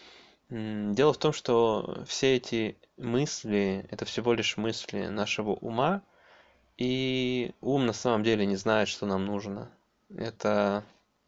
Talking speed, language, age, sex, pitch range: 130 wpm, Russian, 20-39, male, 105-120 Hz